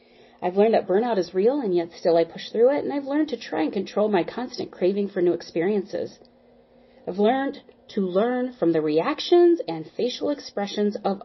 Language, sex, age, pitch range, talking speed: English, female, 30-49, 175-250 Hz, 195 wpm